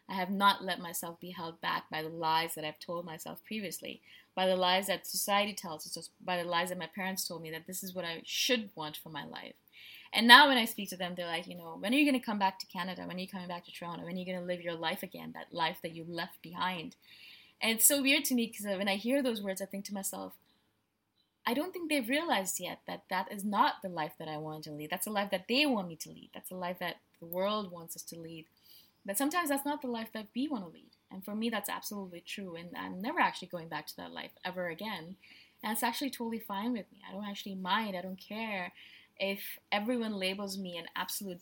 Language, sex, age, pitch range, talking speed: English, female, 20-39, 175-210 Hz, 265 wpm